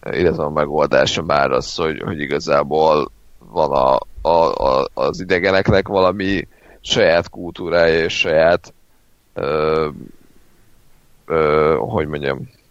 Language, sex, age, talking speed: Hungarian, male, 30-49, 110 wpm